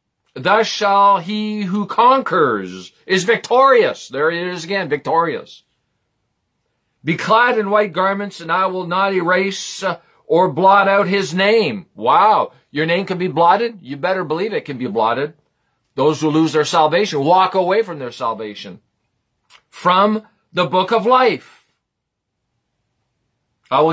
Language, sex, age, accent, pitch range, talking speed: English, male, 50-69, American, 160-205 Hz, 145 wpm